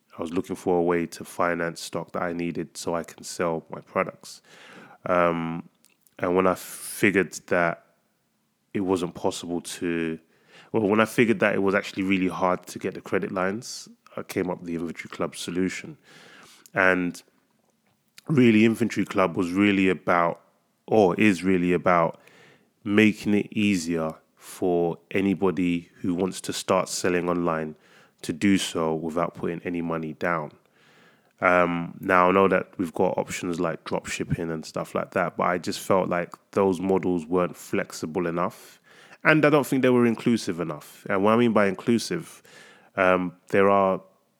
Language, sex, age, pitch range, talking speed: English, male, 20-39, 85-100 Hz, 165 wpm